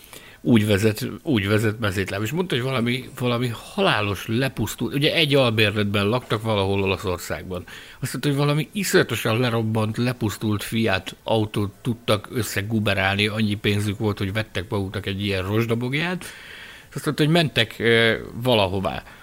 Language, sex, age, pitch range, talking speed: Hungarian, male, 60-79, 105-140 Hz, 135 wpm